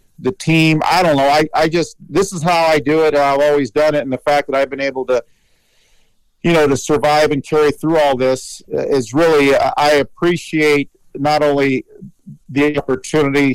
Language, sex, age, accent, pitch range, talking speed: English, male, 50-69, American, 130-150 Hz, 190 wpm